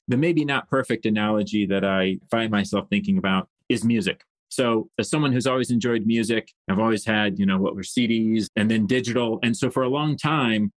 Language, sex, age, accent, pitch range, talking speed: English, male, 30-49, American, 105-130 Hz, 205 wpm